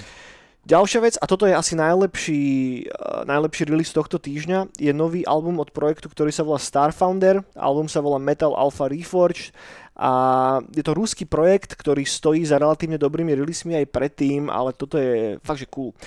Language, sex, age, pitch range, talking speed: Slovak, male, 20-39, 140-170 Hz, 175 wpm